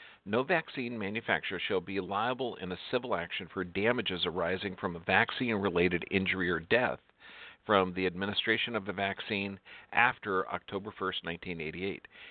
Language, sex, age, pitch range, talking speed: English, male, 50-69, 90-110 Hz, 140 wpm